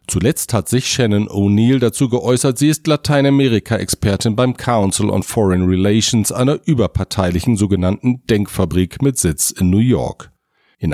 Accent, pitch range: German, 95-125 Hz